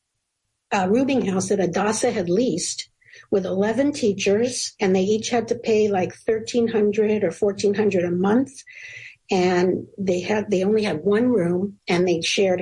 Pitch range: 180-220 Hz